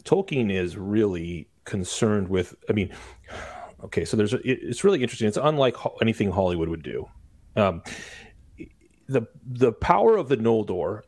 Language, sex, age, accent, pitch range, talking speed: English, male, 30-49, American, 95-120 Hz, 140 wpm